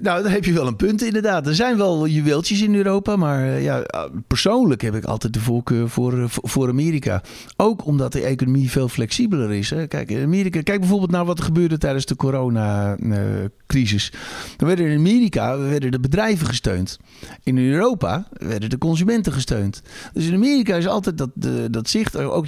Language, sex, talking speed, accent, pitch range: Dutch, male, 180 wpm, Dutch, 120-165 Hz